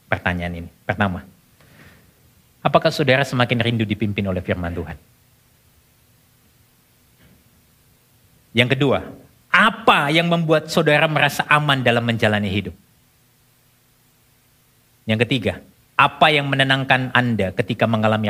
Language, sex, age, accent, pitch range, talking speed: Indonesian, male, 50-69, native, 105-130 Hz, 100 wpm